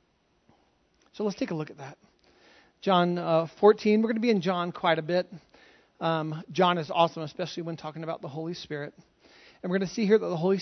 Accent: American